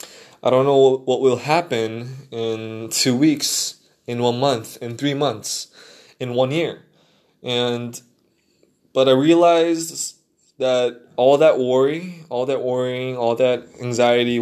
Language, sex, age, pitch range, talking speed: English, male, 20-39, 115-140 Hz, 135 wpm